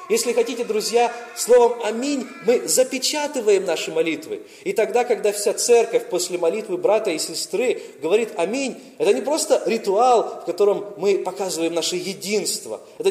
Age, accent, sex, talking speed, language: 20-39, native, male, 145 wpm, Russian